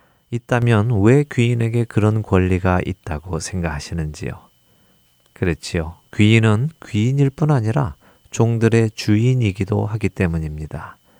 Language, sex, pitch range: Korean, male, 85-115 Hz